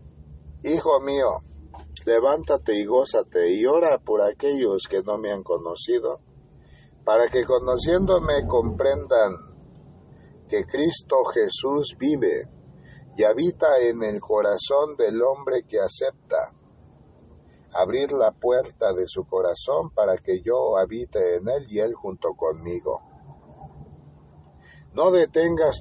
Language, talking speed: Spanish, 115 wpm